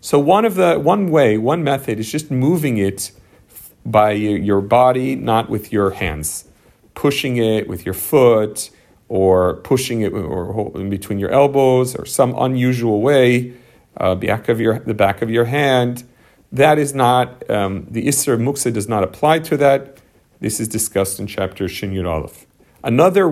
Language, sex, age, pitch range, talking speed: English, male, 40-59, 100-130 Hz, 170 wpm